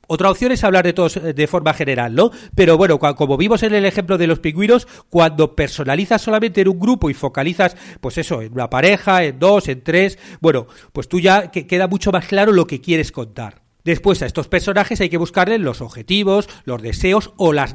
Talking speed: 210 wpm